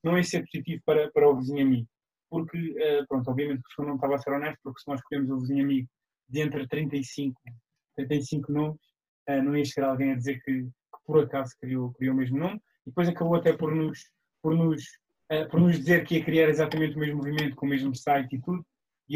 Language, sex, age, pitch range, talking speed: English, male, 20-39, 135-165 Hz, 220 wpm